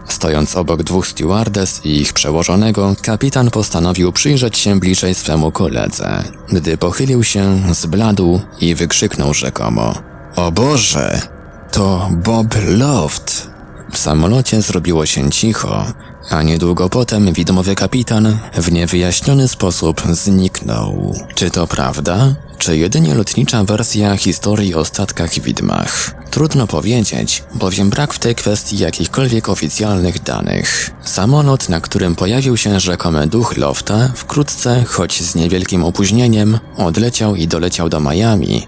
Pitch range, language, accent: 85-110 Hz, Polish, native